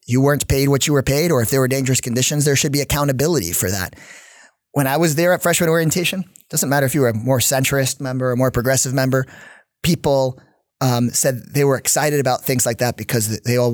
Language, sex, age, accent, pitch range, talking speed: English, male, 30-49, American, 120-150 Hz, 230 wpm